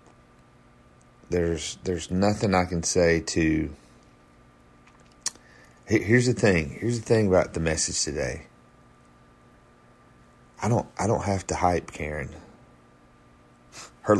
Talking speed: 110 wpm